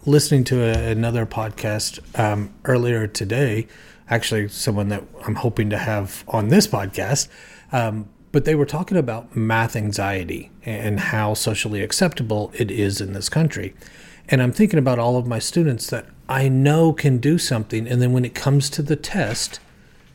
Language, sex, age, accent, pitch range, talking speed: English, male, 30-49, American, 110-135 Hz, 165 wpm